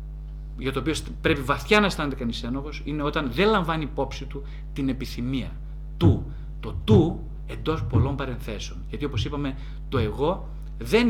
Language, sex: Greek, male